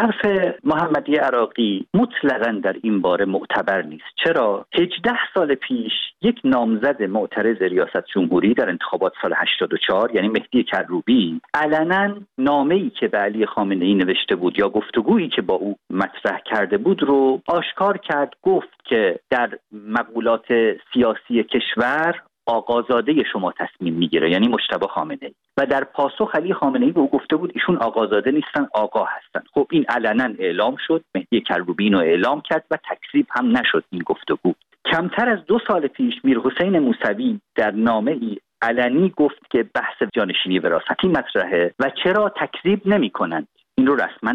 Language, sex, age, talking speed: Persian, male, 50-69, 160 wpm